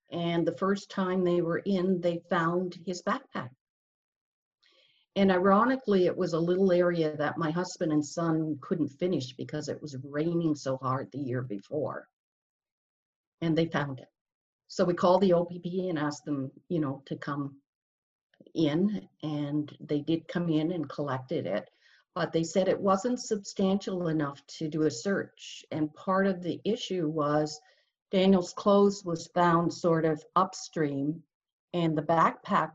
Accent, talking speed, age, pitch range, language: American, 160 wpm, 50-69, 150-190 Hz, English